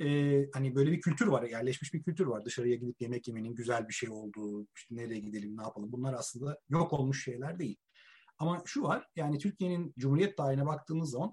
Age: 40-59